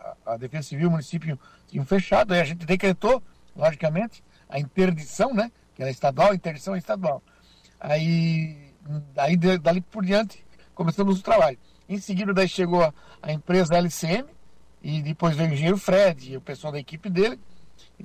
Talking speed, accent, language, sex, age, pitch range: 175 wpm, Brazilian, Portuguese, male, 60-79, 155-195 Hz